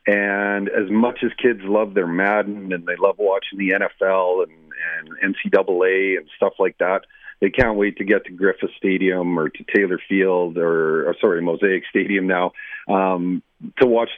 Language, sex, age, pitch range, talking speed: English, male, 40-59, 95-115 Hz, 180 wpm